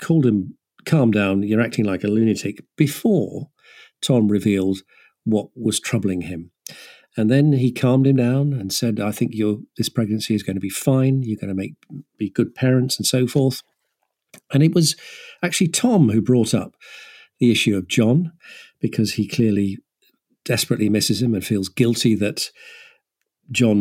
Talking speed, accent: 170 wpm, British